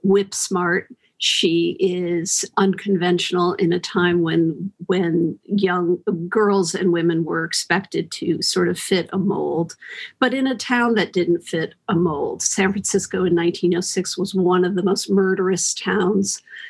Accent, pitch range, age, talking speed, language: American, 180-205 Hz, 50-69, 145 wpm, English